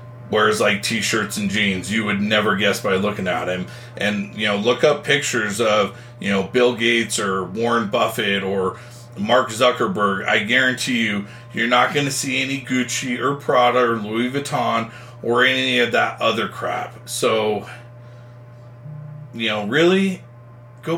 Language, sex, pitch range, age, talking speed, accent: English, male, 120-140 Hz, 40-59, 160 wpm, American